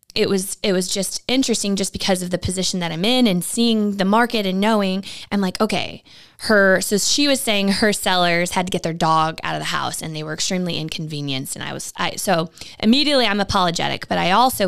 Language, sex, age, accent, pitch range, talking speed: English, female, 20-39, American, 170-210 Hz, 225 wpm